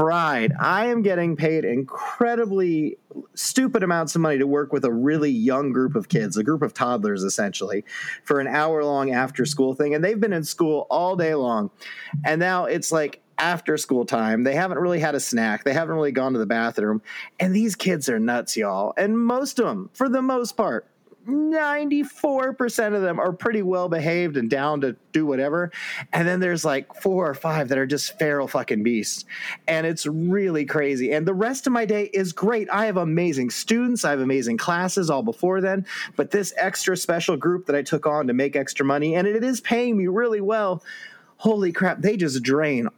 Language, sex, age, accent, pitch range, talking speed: English, male, 30-49, American, 140-195 Hz, 200 wpm